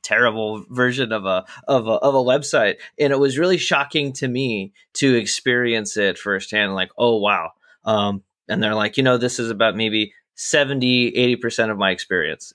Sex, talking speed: male, 185 wpm